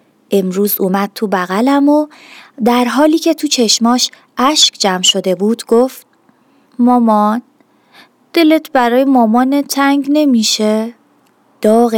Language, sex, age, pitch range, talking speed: Persian, female, 30-49, 215-280 Hz, 110 wpm